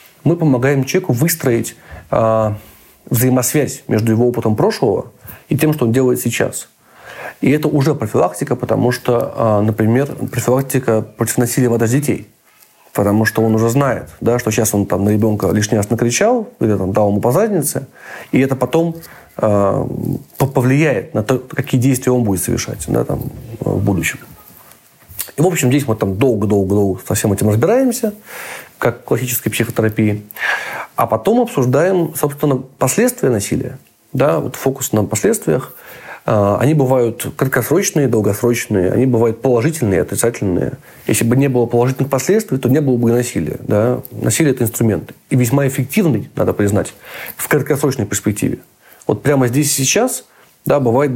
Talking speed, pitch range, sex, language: 145 wpm, 110-140 Hz, male, Russian